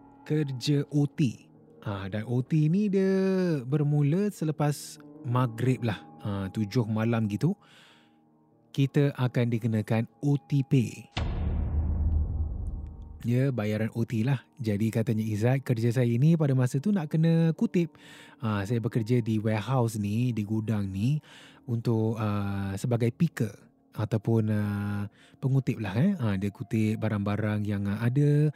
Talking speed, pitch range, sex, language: 125 wpm, 105-140 Hz, male, Malay